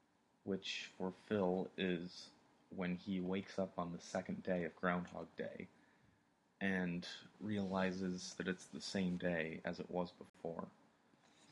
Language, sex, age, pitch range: English, male, 30-49, 85-100 Hz